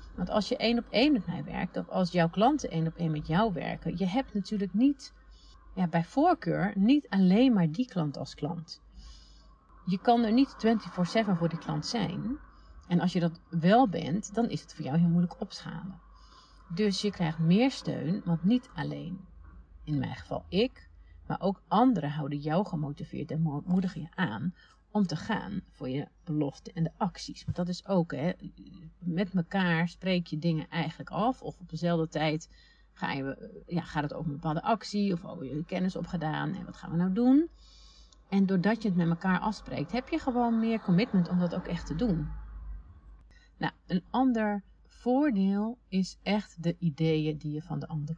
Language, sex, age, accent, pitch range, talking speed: Dutch, female, 40-59, Dutch, 160-210 Hz, 190 wpm